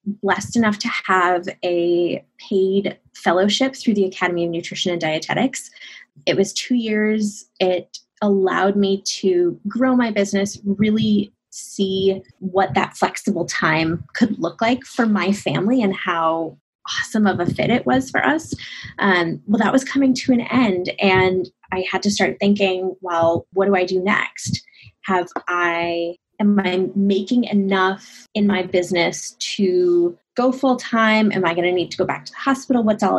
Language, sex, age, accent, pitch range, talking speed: English, female, 20-39, American, 180-210 Hz, 165 wpm